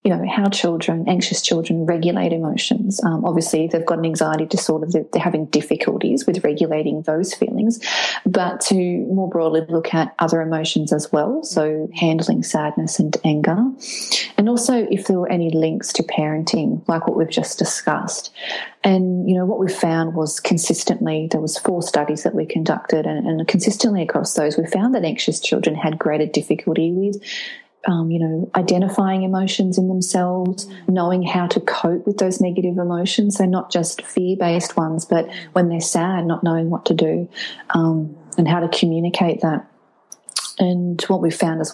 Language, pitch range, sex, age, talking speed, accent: English, 165-195 Hz, female, 30-49, 175 wpm, Australian